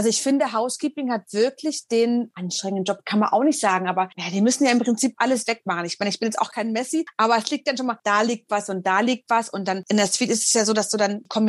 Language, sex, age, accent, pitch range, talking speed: German, female, 30-49, German, 195-250 Hz, 300 wpm